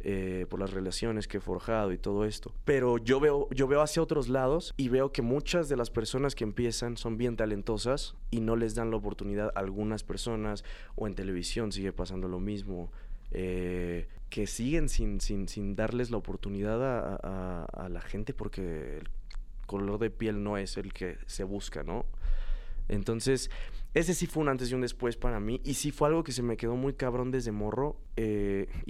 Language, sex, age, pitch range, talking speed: Spanish, male, 20-39, 95-120 Hz, 200 wpm